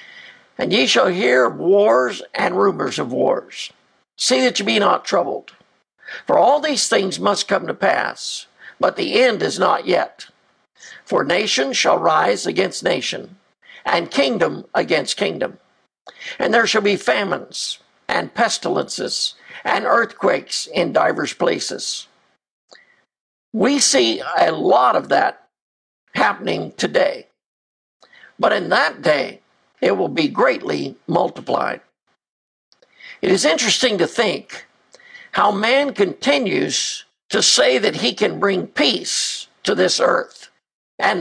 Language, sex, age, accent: English, male, 60-79, American